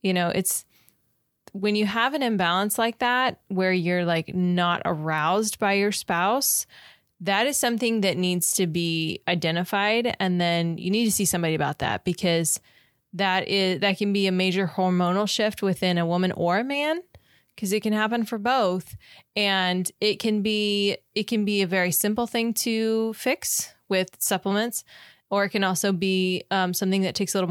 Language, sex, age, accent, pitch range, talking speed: English, female, 20-39, American, 170-200 Hz, 180 wpm